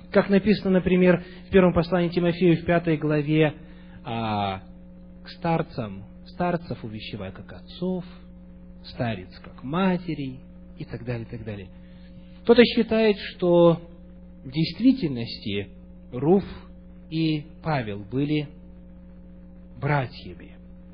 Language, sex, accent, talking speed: Russian, male, native, 100 wpm